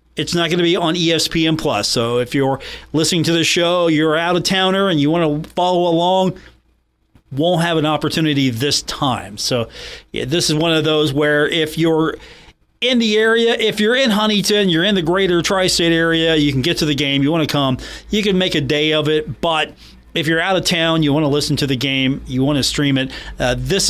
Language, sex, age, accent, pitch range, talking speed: English, male, 40-59, American, 130-165 Hz, 225 wpm